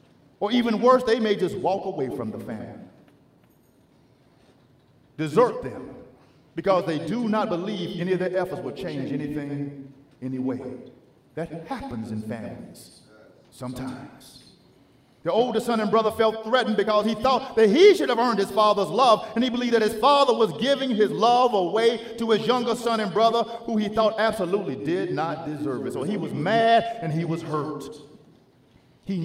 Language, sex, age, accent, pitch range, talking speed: English, male, 40-59, American, 165-230 Hz, 170 wpm